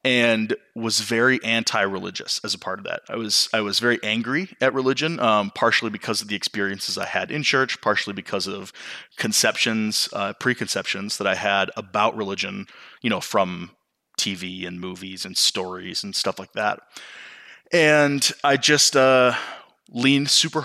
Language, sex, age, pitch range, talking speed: English, male, 20-39, 105-130 Hz, 165 wpm